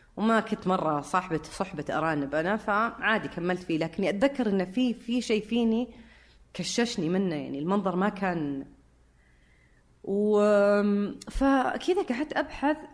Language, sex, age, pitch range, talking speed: Arabic, female, 30-49, 155-210 Hz, 125 wpm